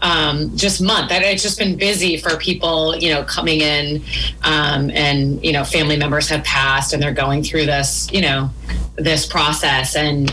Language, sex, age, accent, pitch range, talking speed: English, female, 30-49, American, 155-205 Hz, 180 wpm